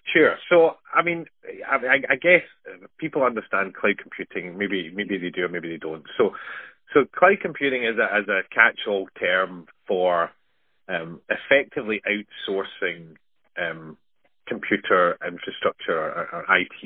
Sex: male